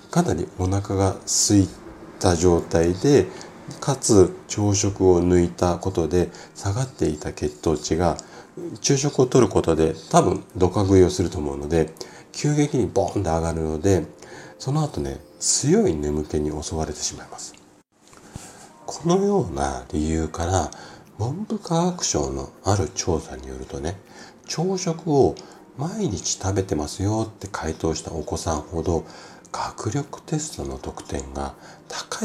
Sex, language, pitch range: male, Japanese, 75-100 Hz